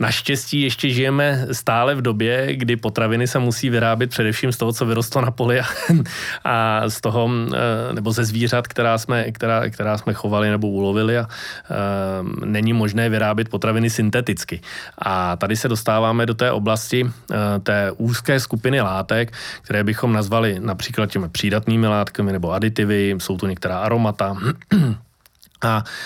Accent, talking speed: native, 140 wpm